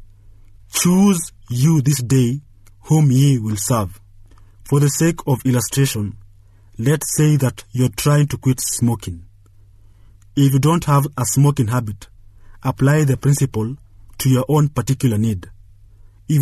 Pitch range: 100-135 Hz